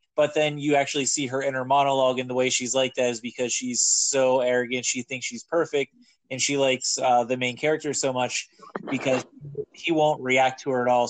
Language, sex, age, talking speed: English, male, 20-39, 215 wpm